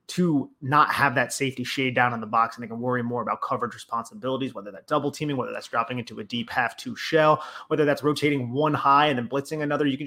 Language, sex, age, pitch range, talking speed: English, male, 30-49, 115-140 Hz, 250 wpm